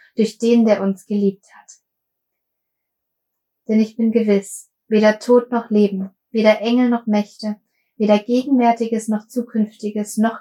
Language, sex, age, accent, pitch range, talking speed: German, female, 20-39, German, 200-225 Hz, 135 wpm